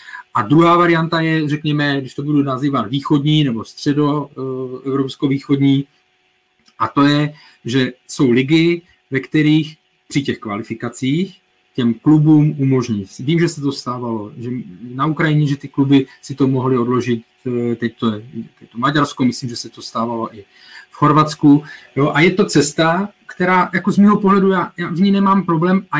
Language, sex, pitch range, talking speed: Czech, male, 130-160 Hz, 165 wpm